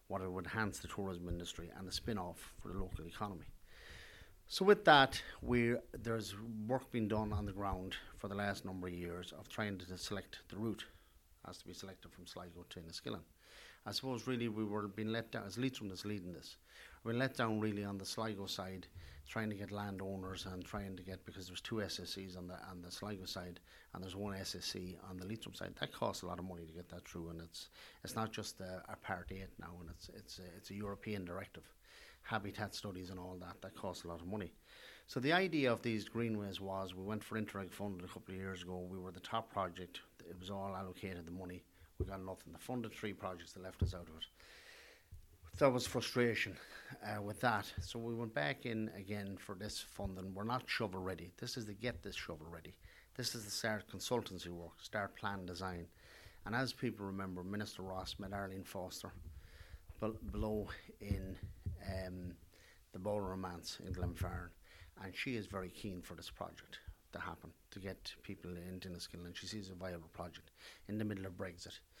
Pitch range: 90-105 Hz